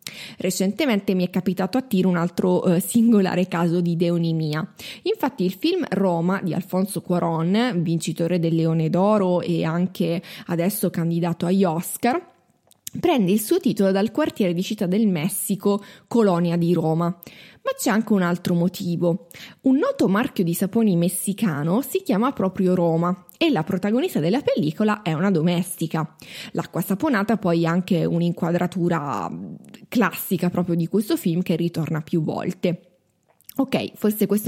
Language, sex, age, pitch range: Italian, female, 20-39, 175-215 Hz